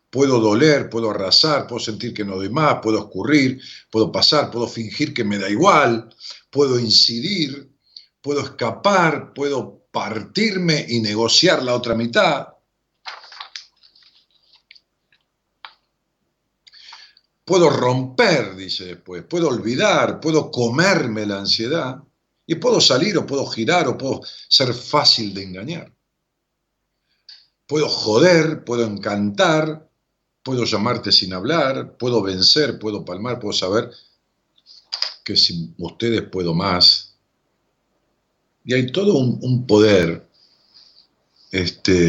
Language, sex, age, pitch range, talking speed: Spanish, male, 50-69, 105-145 Hz, 110 wpm